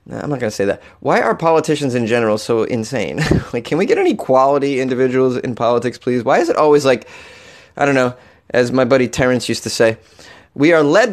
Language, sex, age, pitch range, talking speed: English, male, 30-49, 120-170 Hz, 220 wpm